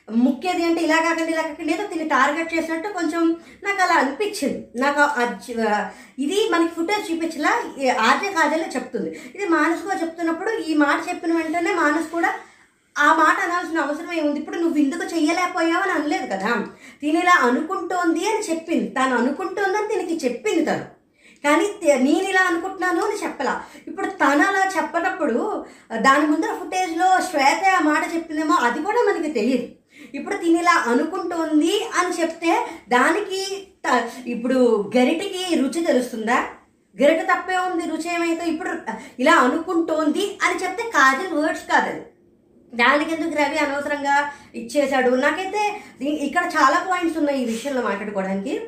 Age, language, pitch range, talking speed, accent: 20-39, Telugu, 280-360 Hz, 130 wpm, native